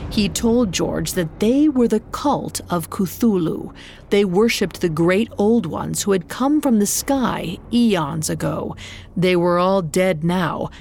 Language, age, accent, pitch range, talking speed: English, 40-59, American, 170-230 Hz, 160 wpm